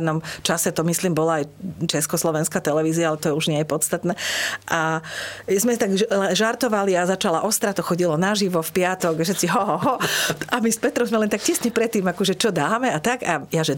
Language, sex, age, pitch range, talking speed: Slovak, female, 40-59, 165-215 Hz, 190 wpm